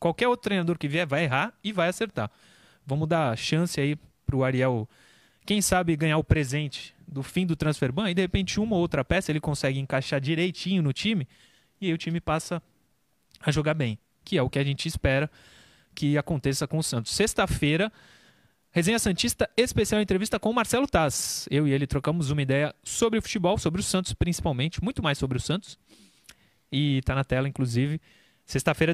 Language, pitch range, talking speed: Portuguese, 135-185 Hz, 195 wpm